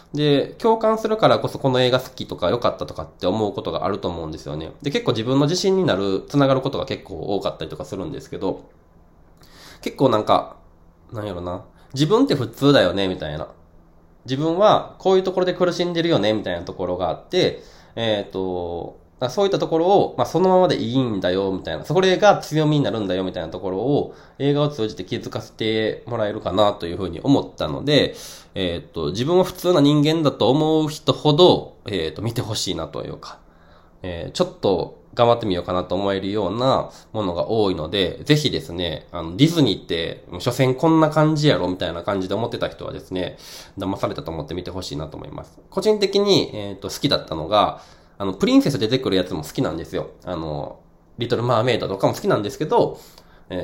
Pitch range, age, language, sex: 90-150 Hz, 20-39, Japanese, male